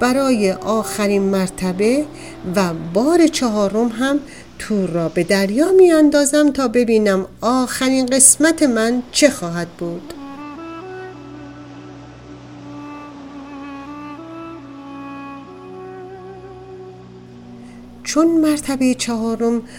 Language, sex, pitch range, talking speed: Persian, female, 175-260 Hz, 70 wpm